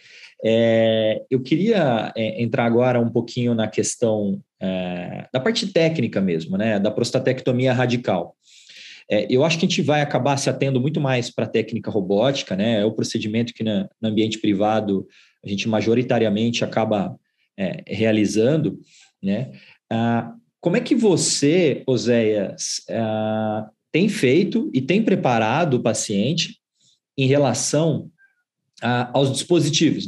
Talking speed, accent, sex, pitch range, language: 140 wpm, Brazilian, male, 110-145 Hz, Portuguese